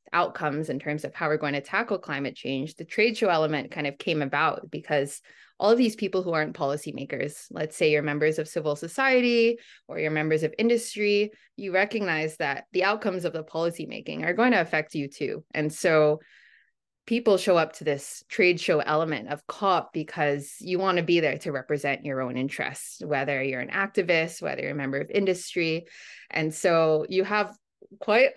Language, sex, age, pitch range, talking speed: English, female, 20-39, 150-190 Hz, 195 wpm